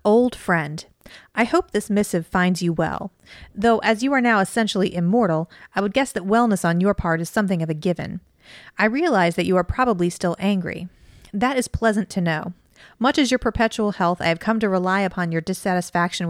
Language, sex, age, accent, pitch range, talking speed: English, female, 30-49, American, 180-225 Hz, 205 wpm